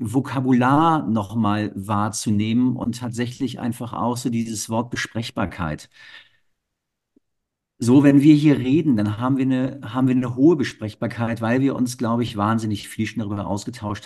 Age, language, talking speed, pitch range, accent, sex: 50-69, German, 135 wpm, 100-120 Hz, German, male